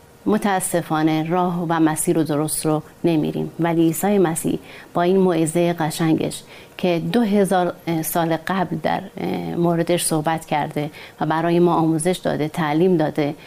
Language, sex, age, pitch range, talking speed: Persian, female, 30-49, 155-180 Hz, 135 wpm